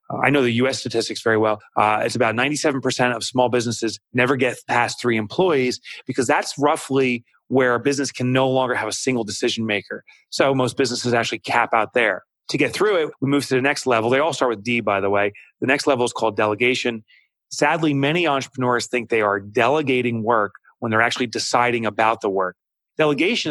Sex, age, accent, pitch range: male, 30-49, American, 115-145 Hz